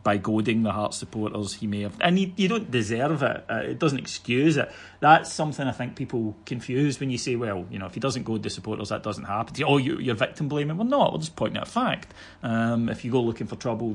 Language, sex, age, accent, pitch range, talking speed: English, male, 30-49, British, 100-135 Hz, 260 wpm